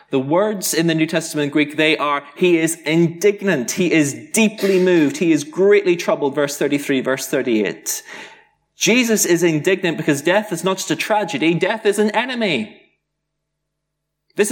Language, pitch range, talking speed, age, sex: English, 140-175 Hz, 160 wpm, 20-39, male